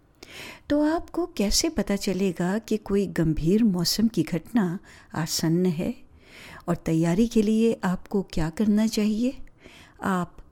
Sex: female